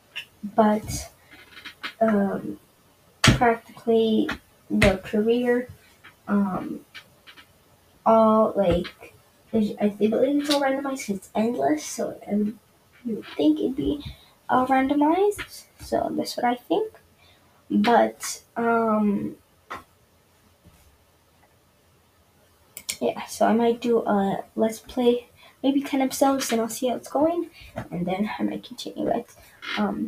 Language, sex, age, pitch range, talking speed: English, female, 20-39, 200-245 Hz, 110 wpm